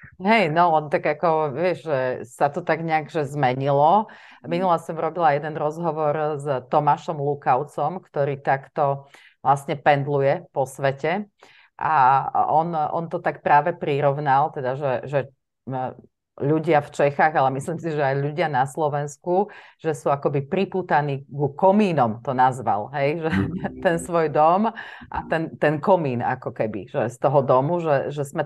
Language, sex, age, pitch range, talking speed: Slovak, female, 30-49, 145-175 Hz, 155 wpm